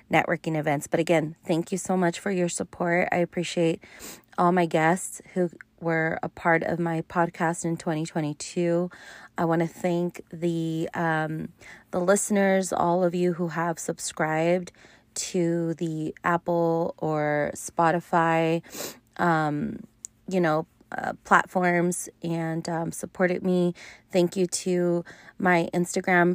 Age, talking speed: 30-49, 135 wpm